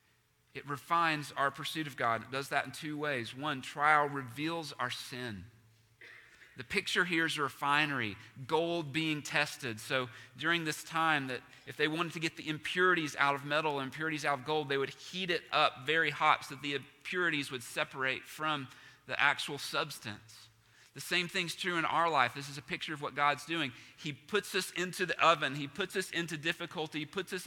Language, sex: English, male